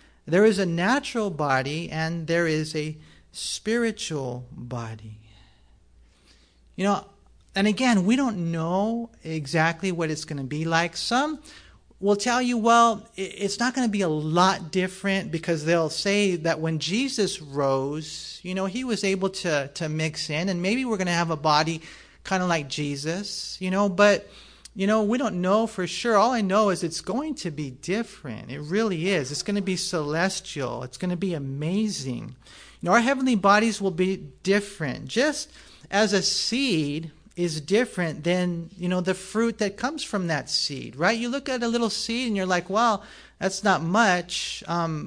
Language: English